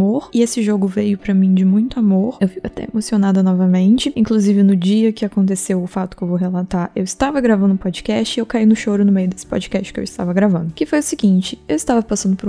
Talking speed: 245 wpm